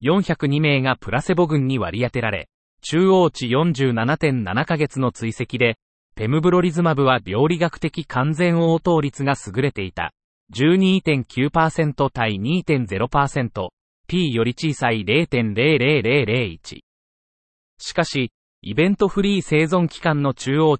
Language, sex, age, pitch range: Japanese, male, 30-49, 115-165 Hz